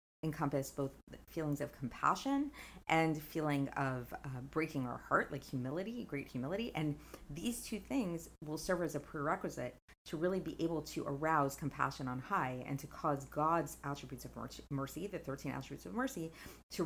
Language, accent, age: English, American, 30-49